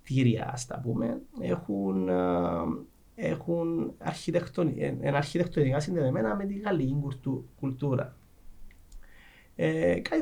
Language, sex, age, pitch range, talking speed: Greek, male, 30-49, 130-175 Hz, 65 wpm